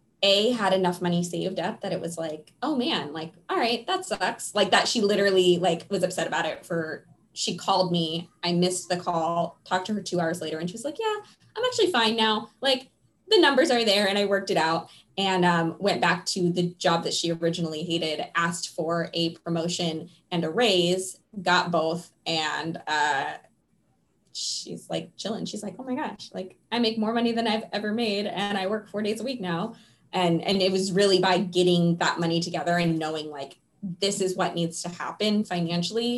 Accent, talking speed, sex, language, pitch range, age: American, 205 wpm, female, English, 170-205 Hz, 20-39